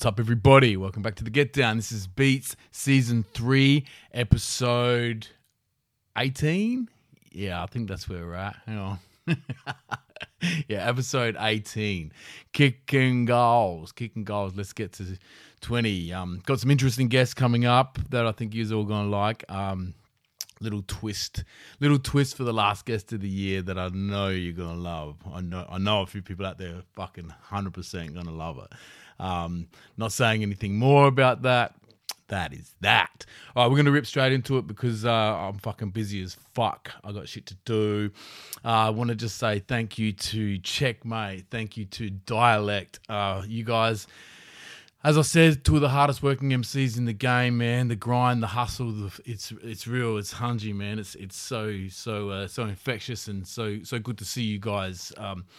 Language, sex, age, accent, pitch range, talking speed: English, male, 20-39, Australian, 95-120 Hz, 185 wpm